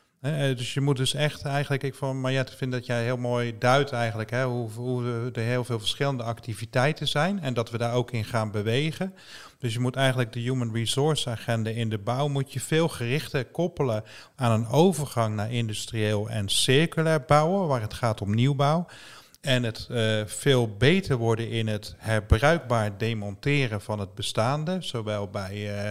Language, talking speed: Dutch, 180 wpm